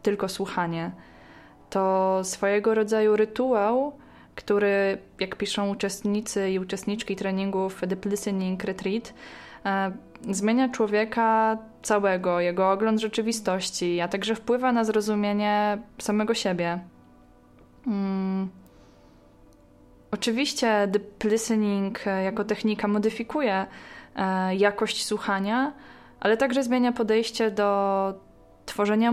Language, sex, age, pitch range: Polish, female, 20-39, 190-220 Hz